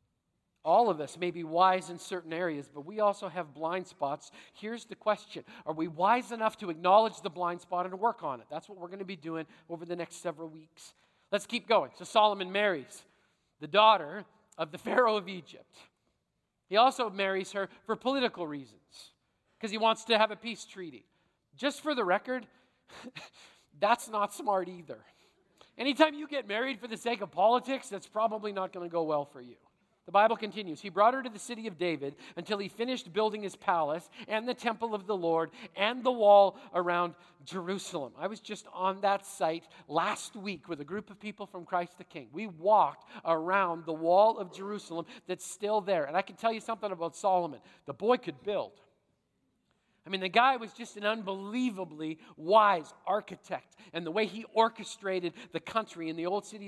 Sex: male